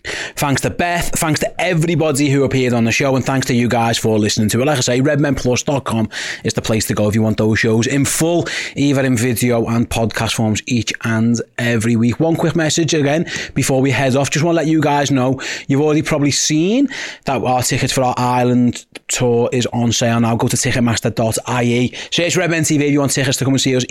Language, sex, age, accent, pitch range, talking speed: English, male, 30-49, British, 125-155 Hz, 225 wpm